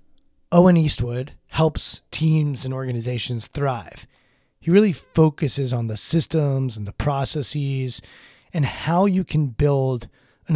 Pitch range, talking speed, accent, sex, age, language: 130-160 Hz, 125 wpm, American, male, 30-49, English